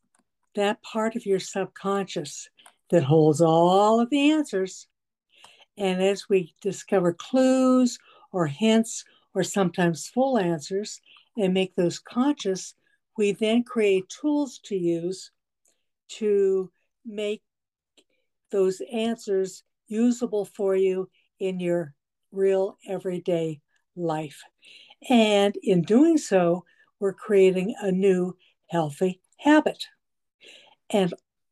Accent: American